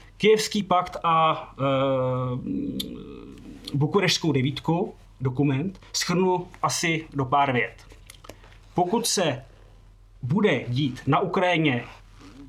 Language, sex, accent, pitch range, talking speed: Czech, male, native, 120-170 Hz, 85 wpm